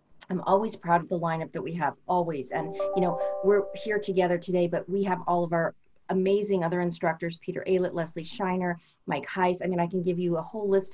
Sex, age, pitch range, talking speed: female, 30-49, 165-190 Hz, 225 wpm